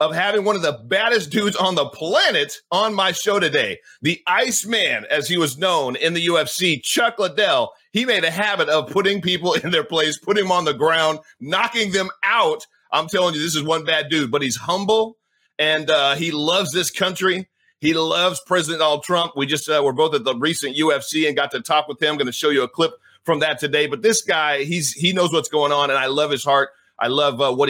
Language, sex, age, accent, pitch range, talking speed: English, male, 30-49, American, 150-190 Hz, 235 wpm